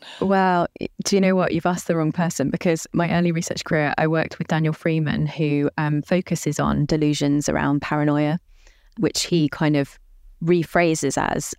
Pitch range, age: 155-175 Hz, 20-39